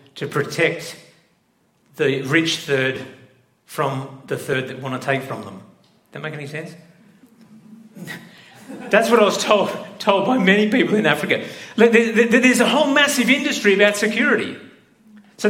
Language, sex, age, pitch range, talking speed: English, male, 40-59, 165-230 Hz, 145 wpm